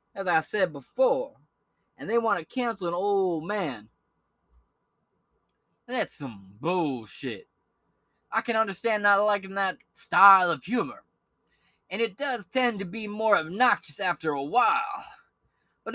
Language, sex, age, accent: English, male, 20-39, American